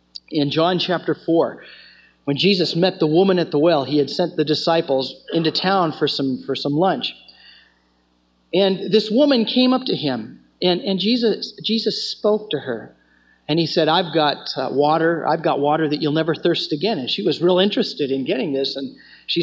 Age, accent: 40-59, American